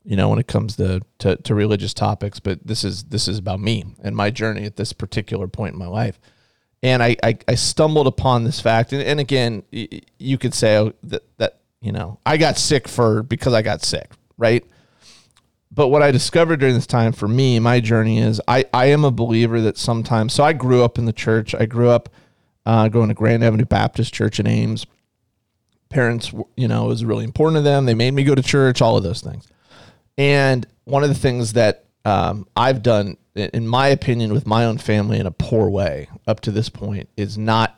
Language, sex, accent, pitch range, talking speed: English, male, American, 110-125 Hz, 220 wpm